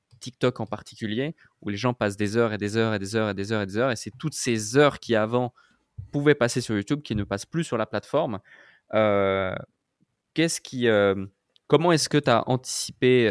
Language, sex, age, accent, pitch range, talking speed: French, male, 20-39, French, 105-125 Hz, 230 wpm